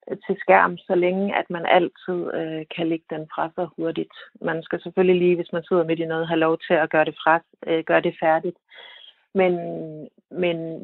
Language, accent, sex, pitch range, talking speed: Danish, native, female, 155-190 Hz, 205 wpm